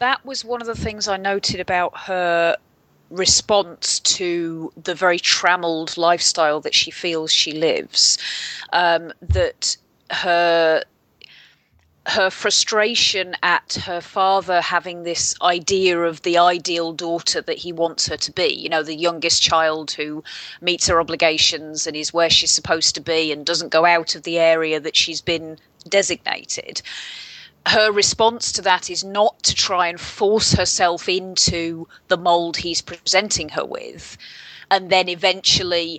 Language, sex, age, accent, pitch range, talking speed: English, female, 30-49, British, 165-200 Hz, 150 wpm